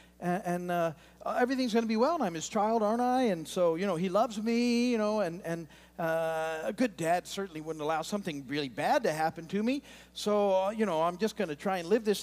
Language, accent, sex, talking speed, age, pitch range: English, American, male, 250 wpm, 50-69, 130-210 Hz